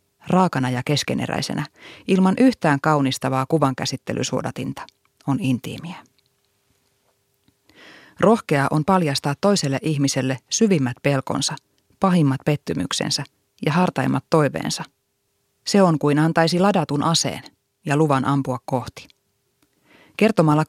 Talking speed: 95 wpm